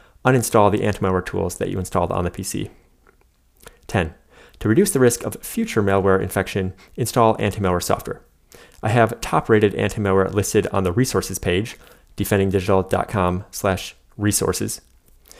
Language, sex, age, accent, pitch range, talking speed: English, male, 30-49, American, 95-110 Hz, 125 wpm